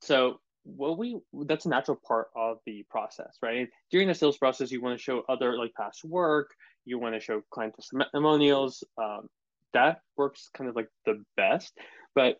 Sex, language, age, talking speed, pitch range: male, English, 20-39, 195 wpm, 115-145 Hz